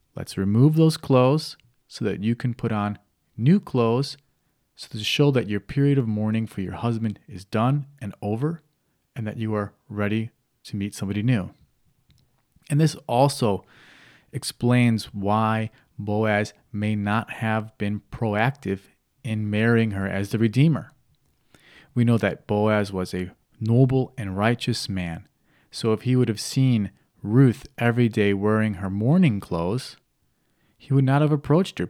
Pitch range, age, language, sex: 105-135 Hz, 30-49, English, male